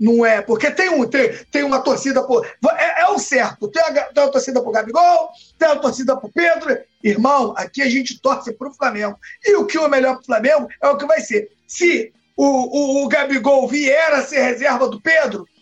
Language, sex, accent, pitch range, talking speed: Portuguese, male, Brazilian, 235-320 Hz, 210 wpm